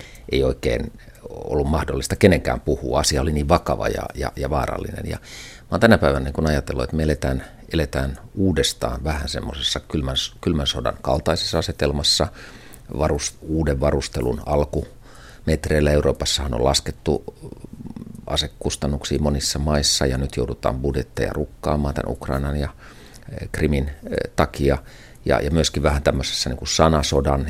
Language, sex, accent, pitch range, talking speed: Finnish, male, native, 70-80 Hz, 130 wpm